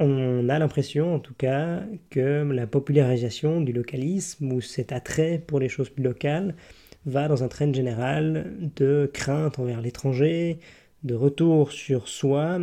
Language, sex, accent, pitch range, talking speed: French, male, French, 130-155 Hz, 150 wpm